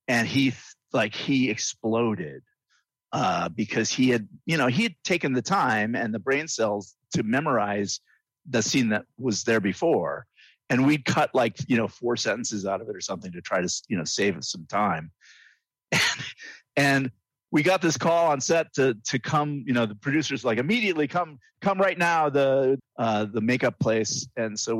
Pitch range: 115-145 Hz